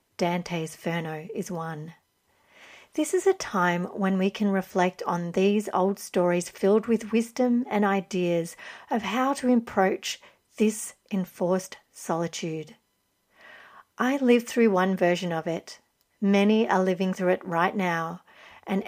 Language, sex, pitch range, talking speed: English, female, 175-215 Hz, 135 wpm